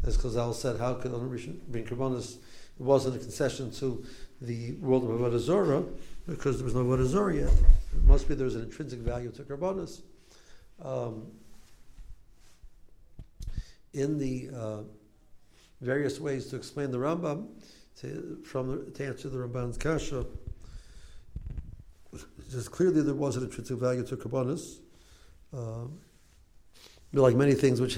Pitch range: 115-140 Hz